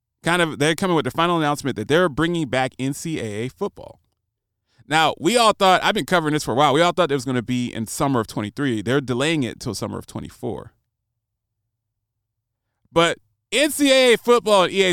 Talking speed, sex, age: 190 wpm, male, 30-49